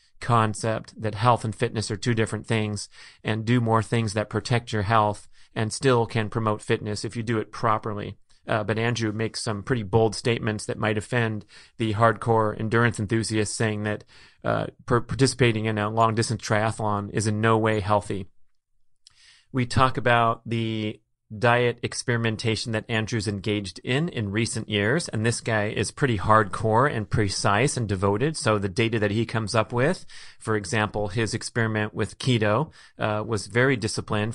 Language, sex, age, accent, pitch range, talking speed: English, male, 30-49, American, 105-120 Hz, 170 wpm